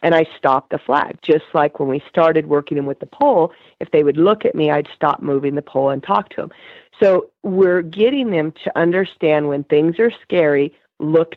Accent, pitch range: American, 150-185 Hz